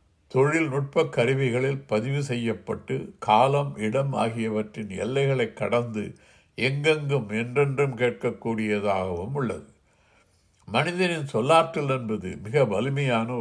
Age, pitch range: 60-79, 105-140 Hz